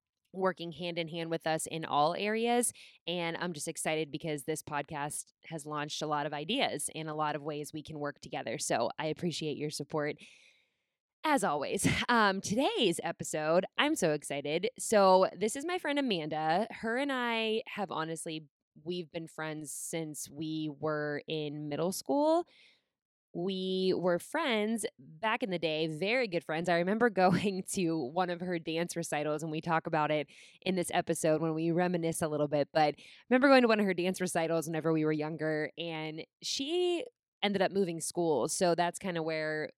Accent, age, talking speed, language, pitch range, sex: American, 20-39, 180 wpm, English, 155-190 Hz, female